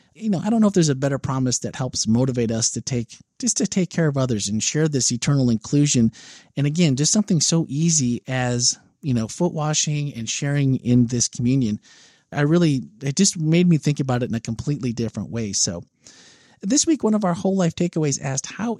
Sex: male